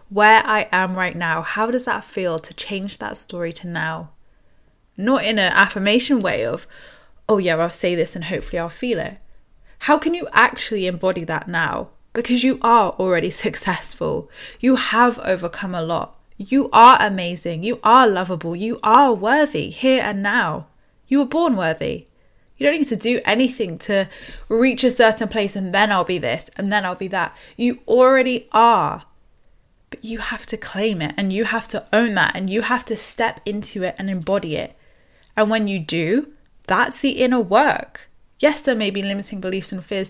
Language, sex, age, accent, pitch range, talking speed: English, female, 10-29, British, 190-250 Hz, 190 wpm